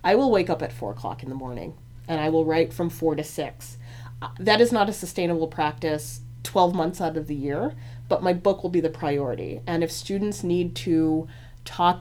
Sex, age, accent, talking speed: female, 30-49, American, 215 wpm